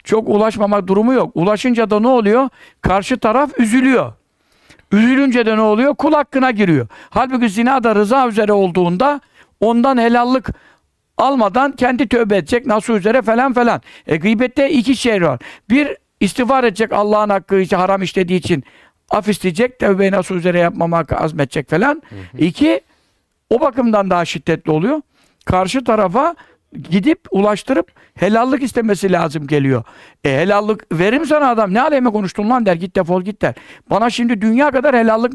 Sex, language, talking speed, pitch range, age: male, Turkish, 150 wpm, 185-245 Hz, 60-79